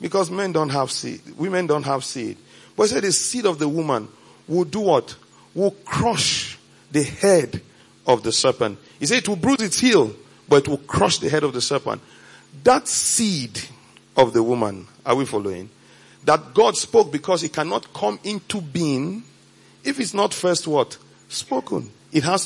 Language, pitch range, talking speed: English, 145-200 Hz, 180 wpm